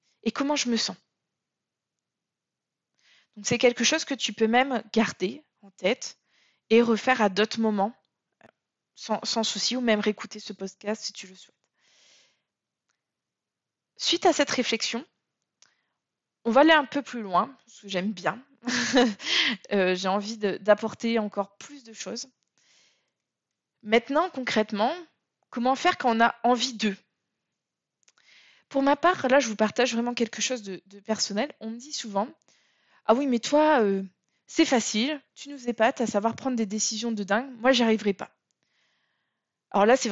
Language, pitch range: French, 205-250 Hz